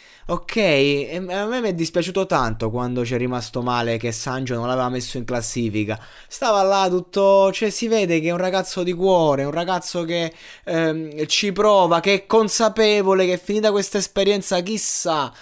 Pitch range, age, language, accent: 125-195 Hz, 20-39, Italian, native